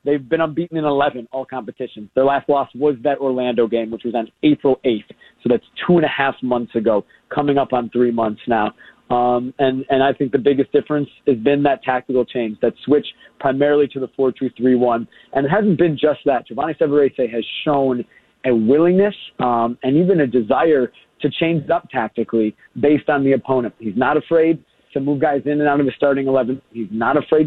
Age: 30-49